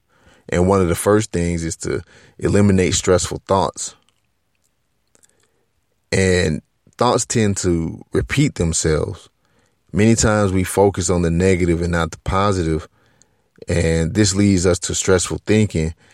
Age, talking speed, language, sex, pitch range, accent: 30-49, 130 wpm, English, male, 85-100 Hz, American